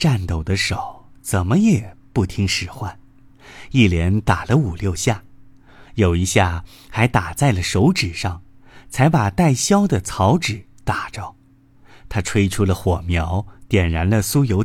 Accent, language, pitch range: native, Chinese, 95-135 Hz